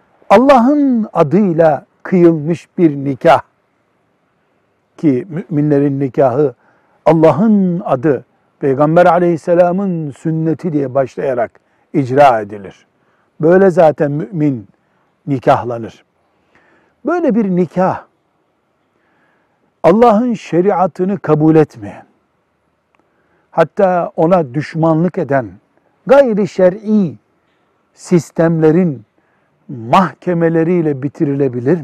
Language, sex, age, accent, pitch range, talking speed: Turkish, male, 60-79, native, 145-185 Hz, 70 wpm